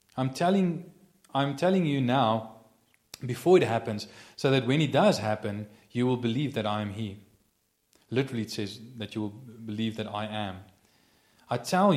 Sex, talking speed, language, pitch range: male, 170 wpm, English, 105-135 Hz